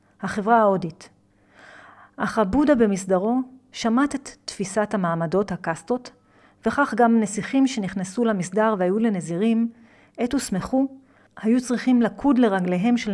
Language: Hebrew